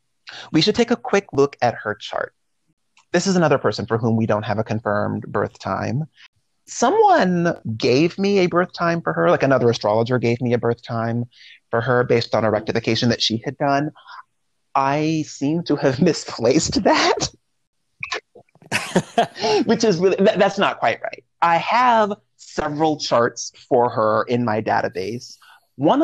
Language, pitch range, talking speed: English, 110-160 Hz, 165 wpm